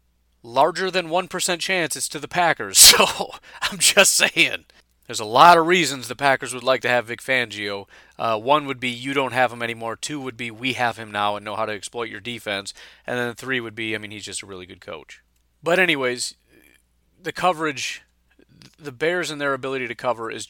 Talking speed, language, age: 215 wpm, English, 30-49